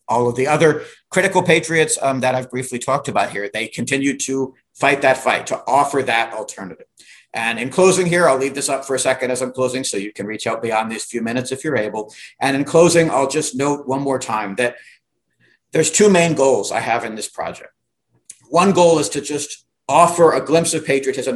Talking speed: 220 wpm